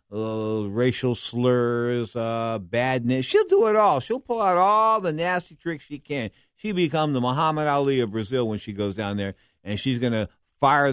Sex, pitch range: male, 110-150 Hz